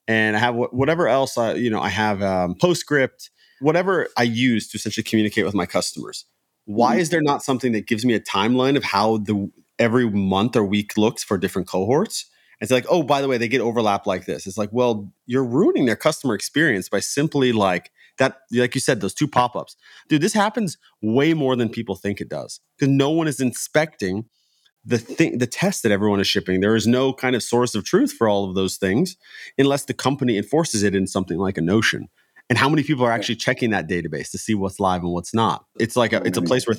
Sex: male